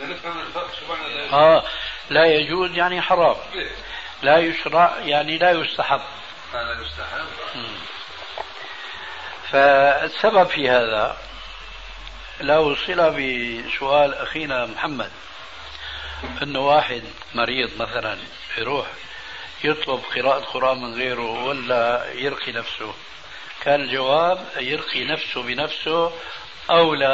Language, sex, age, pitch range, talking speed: Arabic, male, 60-79, 125-155 Hz, 85 wpm